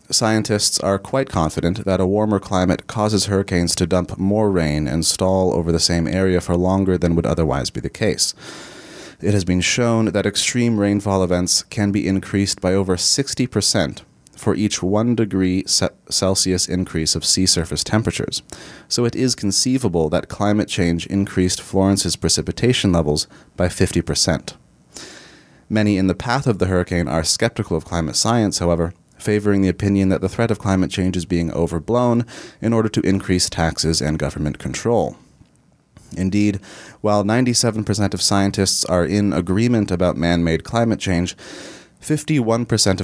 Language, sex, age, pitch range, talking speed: English, male, 30-49, 85-105 Hz, 155 wpm